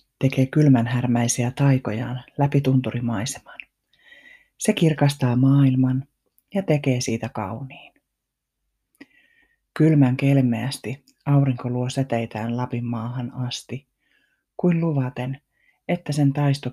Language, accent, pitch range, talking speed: Finnish, native, 120-140 Hz, 95 wpm